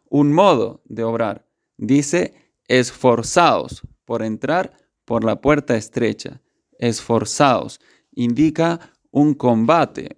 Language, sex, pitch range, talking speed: Spanish, male, 115-145 Hz, 95 wpm